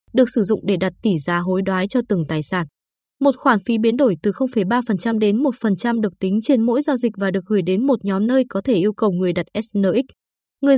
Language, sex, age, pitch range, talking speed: Vietnamese, female, 20-39, 190-255 Hz, 240 wpm